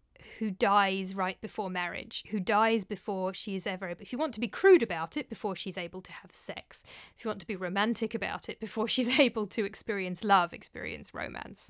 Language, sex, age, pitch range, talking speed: English, female, 30-49, 185-220 Hz, 210 wpm